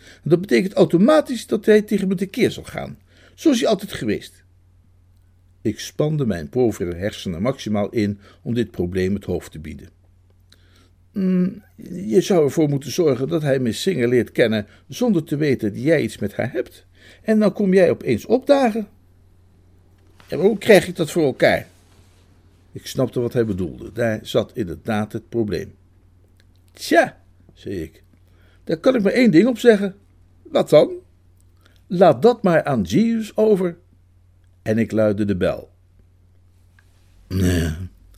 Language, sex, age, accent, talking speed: Dutch, male, 60-79, Dutch, 150 wpm